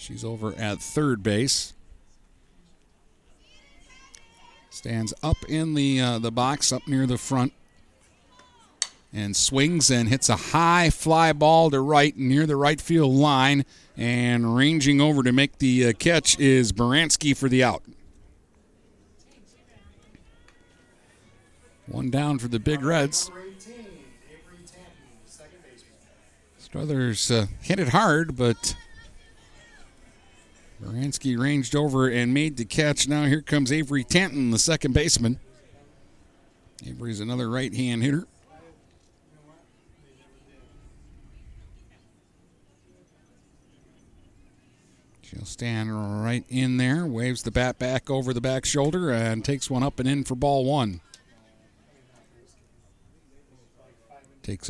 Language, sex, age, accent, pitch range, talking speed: English, male, 50-69, American, 105-140 Hz, 110 wpm